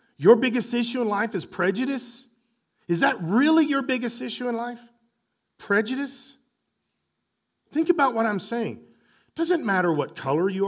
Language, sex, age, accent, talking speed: English, male, 40-59, American, 150 wpm